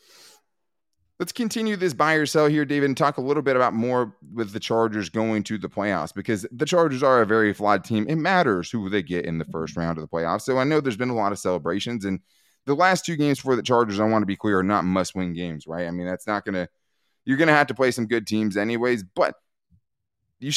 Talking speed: 255 wpm